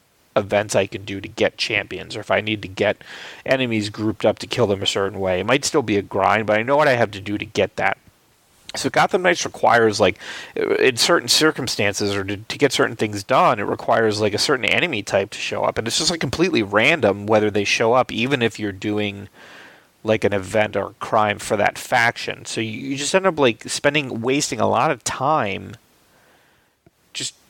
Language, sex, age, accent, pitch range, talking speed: English, male, 30-49, American, 100-125 Hz, 220 wpm